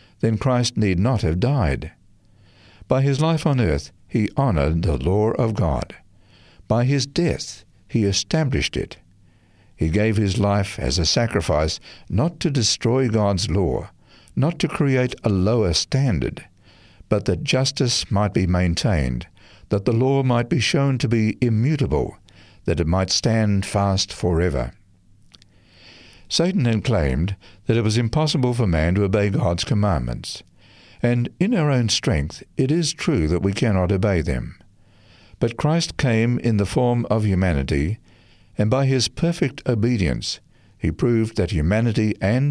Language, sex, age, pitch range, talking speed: English, male, 60-79, 95-120 Hz, 150 wpm